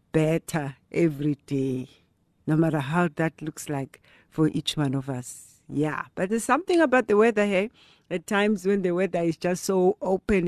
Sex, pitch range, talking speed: female, 140-185 Hz, 180 wpm